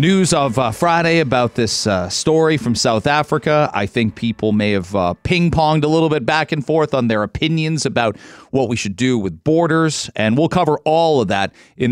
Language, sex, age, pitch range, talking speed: English, male, 40-59, 125-165 Hz, 205 wpm